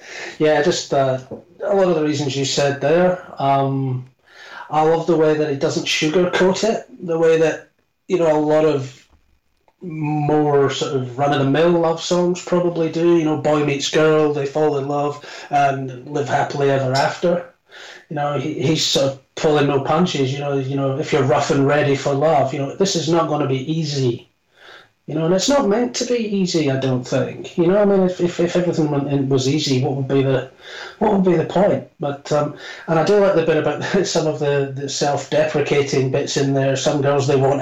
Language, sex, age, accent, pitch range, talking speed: English, male, 30-49, British, 135-160 Hz, 215 wpm